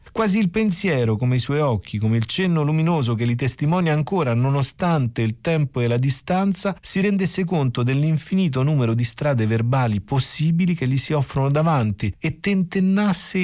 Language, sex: Italian, male